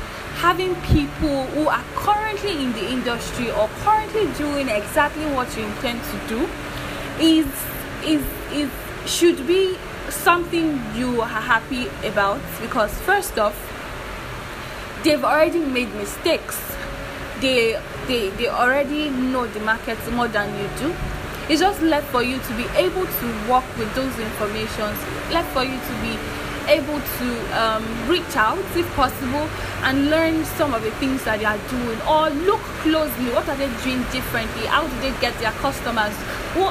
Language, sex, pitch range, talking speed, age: English, female, 240-320 Hz, 155 wpm, 10-29